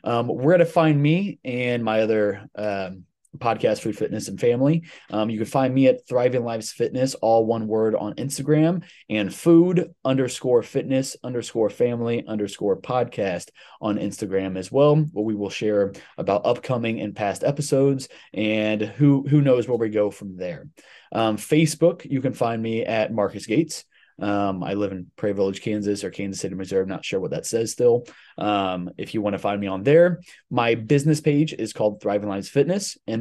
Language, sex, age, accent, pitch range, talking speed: English, male, 20-39, American, 105-140 Hz, 185 wpm